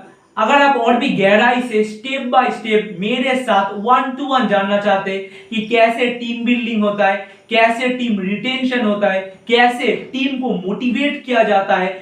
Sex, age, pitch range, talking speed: male, 40-59, 200-245 Hz, 135 wpm